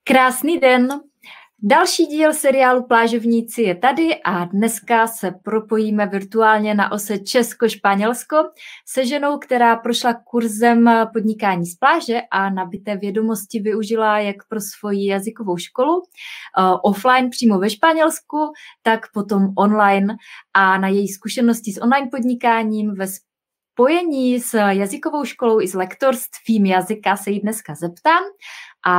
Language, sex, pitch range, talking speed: Czech, female, 195-250 Hz, 125 wpm